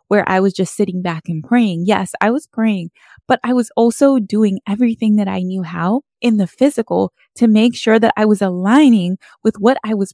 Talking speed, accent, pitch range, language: 215 wpm, American, 190-235 Hz, English